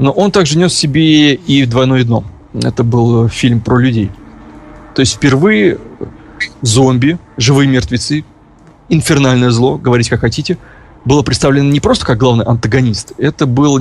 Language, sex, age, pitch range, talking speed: Russian, male, 30-49, 115-140 Hz, 145 wpm